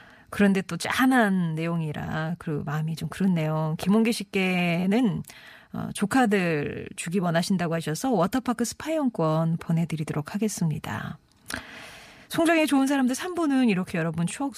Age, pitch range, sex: 40-59, 165-225 Hz, female